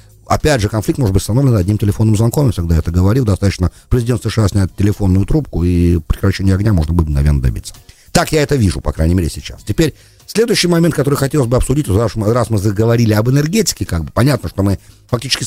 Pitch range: 95-125 Hz